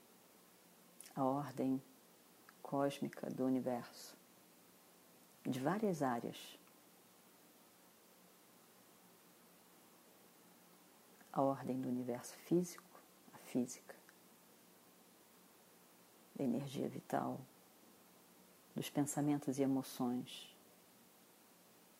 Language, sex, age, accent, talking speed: Portuguese, female, 40-59, Brazilian, 60 wpm